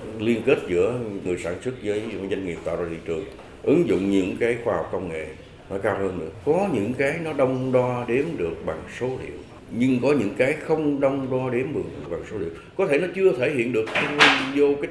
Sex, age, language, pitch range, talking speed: male, 60-79, Vietnamese, 115-180 Hz, 235 wpm